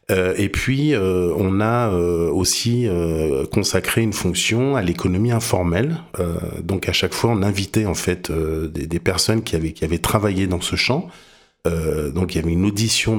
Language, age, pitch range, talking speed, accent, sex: French, 40-59, 85-110 Hz, 195 wpm, French, male